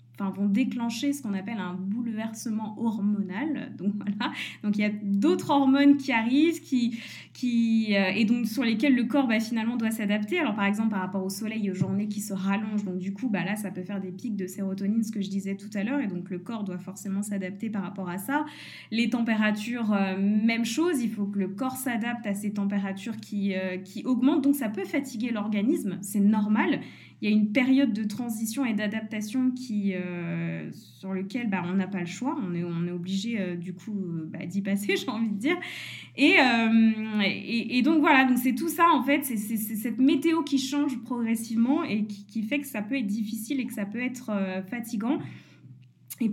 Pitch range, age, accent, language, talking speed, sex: 195-245 Hz, 20-39, French, French, 220 wpm, female